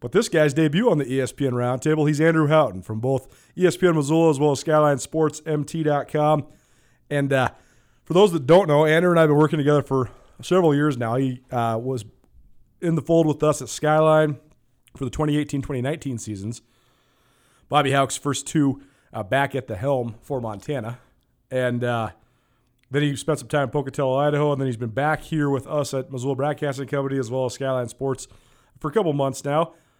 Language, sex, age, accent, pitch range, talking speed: English, male, 30-49, American, 130-155 Hz, 190 wpm